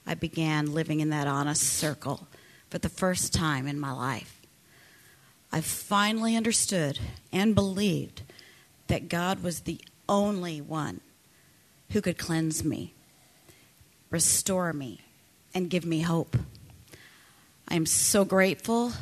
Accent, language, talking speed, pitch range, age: American, English, 125 wpm, 160-200 Hz, 40-59